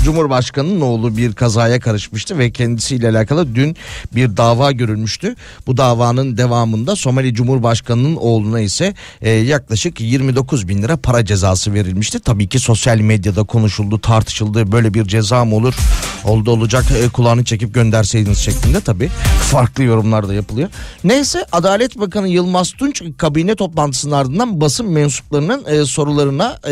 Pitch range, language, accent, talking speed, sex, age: 115-145 Hz, Turkish, native, 130 wpm, male, 40-59